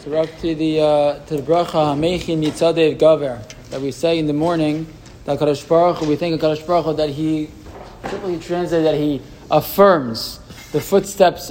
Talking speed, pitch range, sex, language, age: 145 wpm, 135-160 Hz, male, English, 20-39